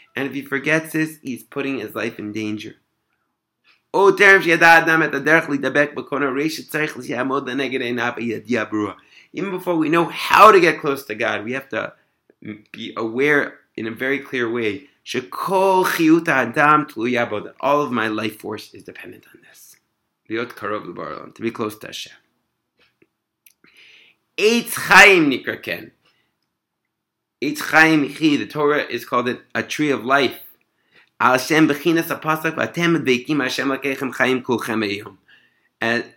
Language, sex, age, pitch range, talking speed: English, male, 30-49, 120-160 Hz, 110 wpm